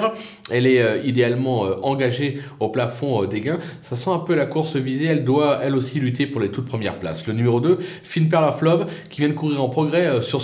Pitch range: 125-175 Hz